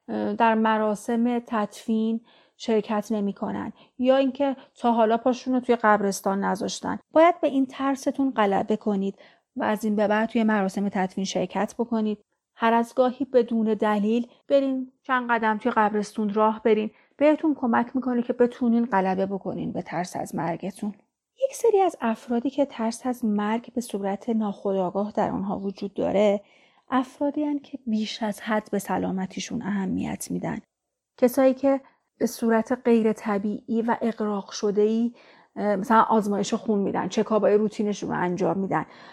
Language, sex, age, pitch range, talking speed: Persian, female, 30-49, 210-255 Hz, 150 wpm